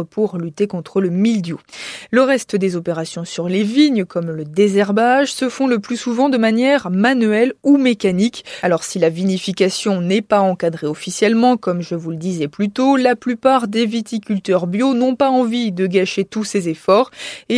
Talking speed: 185 wpm